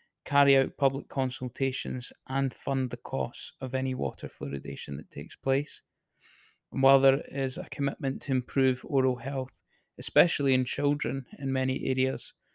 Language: English